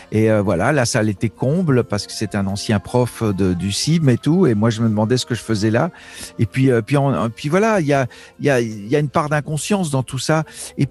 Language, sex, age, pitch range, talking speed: French, male, 50-69, 125-155 Hz, 270 wpm